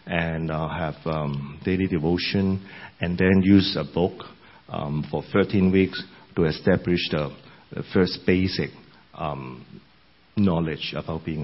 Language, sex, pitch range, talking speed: English, male, 80-105 Hz, 130 wpm